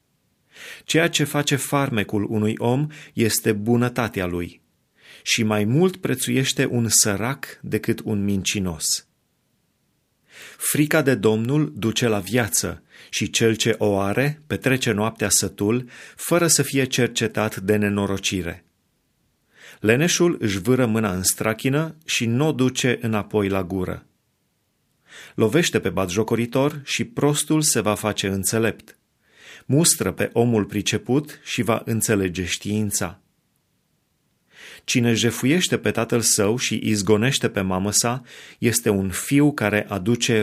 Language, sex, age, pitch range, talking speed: Romanian, male, 30-49, 100-125 Hz, 125 wpm